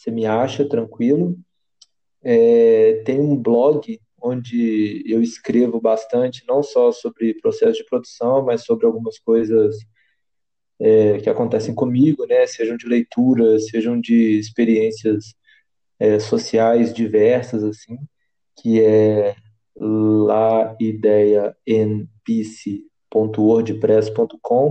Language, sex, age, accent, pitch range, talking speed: Portuguese, male, 20-39, Brazilian, 110-145 Hz, 85 wpm